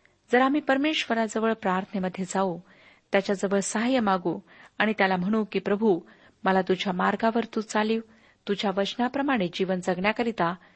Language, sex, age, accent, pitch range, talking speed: Marathi, female, 40-59, native, 190-225 Hz, 125 wpm